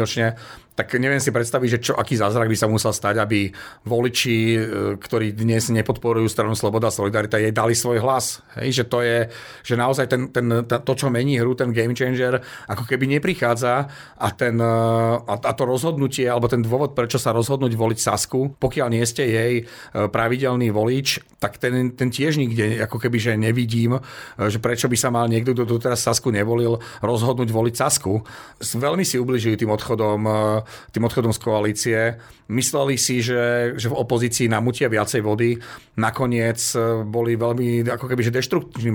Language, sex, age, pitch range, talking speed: Slovak, male, 40-59, 115-130 Hz, 165 wpm